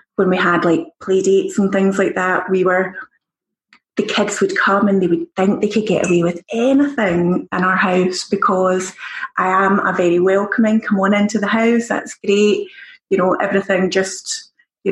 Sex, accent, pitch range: female, British, 185-220 Hz